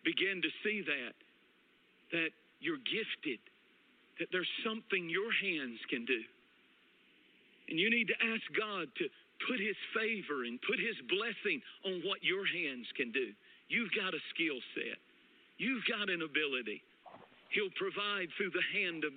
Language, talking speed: English, 155 wpm